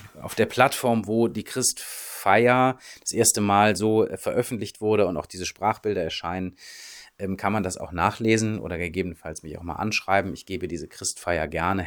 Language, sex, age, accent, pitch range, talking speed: German, male, 30-49, German, 95-115 Hz, 165 wpm